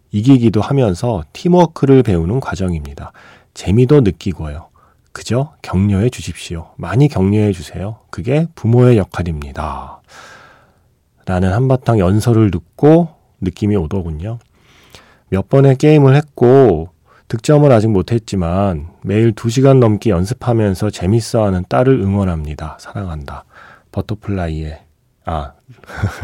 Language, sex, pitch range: Korean, male, 95-135 Hz